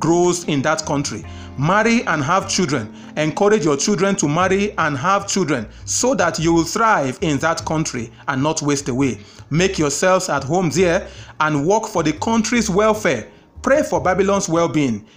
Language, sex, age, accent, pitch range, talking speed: English, male, 30-49, Nigerian, 150-200 Hz, 170 wpm